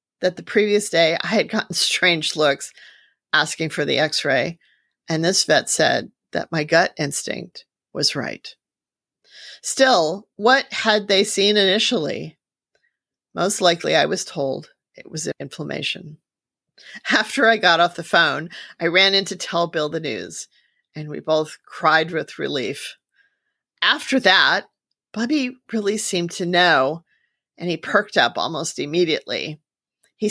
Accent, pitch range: American, 165-220 Hz